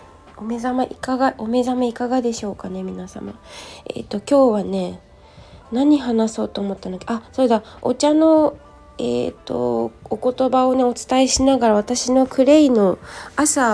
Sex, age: female, 20-39